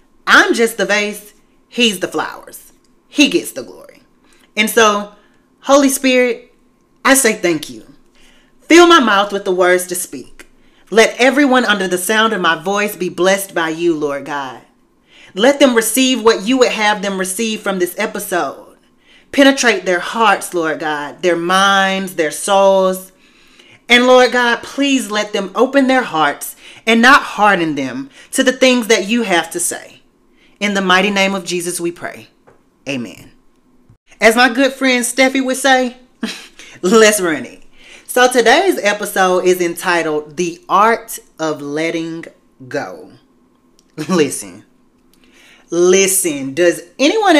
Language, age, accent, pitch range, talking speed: English, 30-49, American, 185-255 Hz, 145 wpm